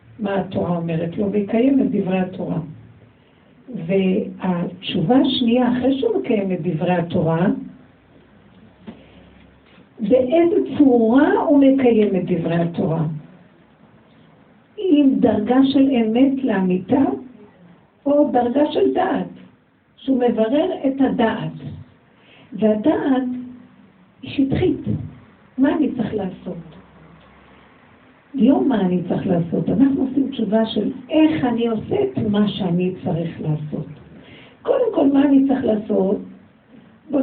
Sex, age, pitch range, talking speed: female, 60-79, 195-270 Hz, 105 wpm